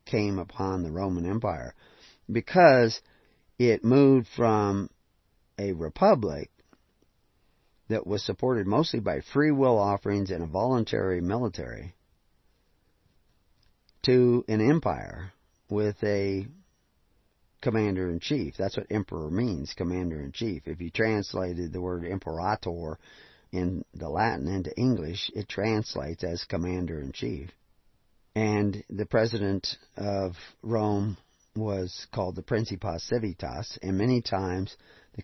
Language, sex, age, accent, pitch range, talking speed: English, male, 50-69, American, 90-120 Hz, 115 wpm